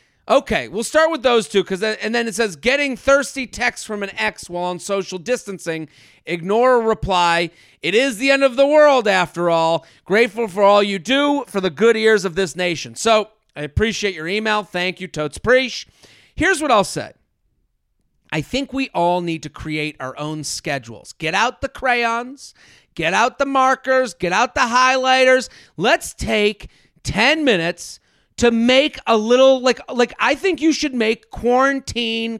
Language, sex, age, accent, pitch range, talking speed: English, male, 40-59, American, 185-265 Hz, 180 wpm